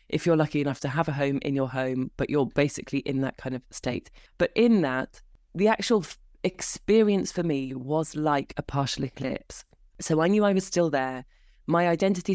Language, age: English, 20-39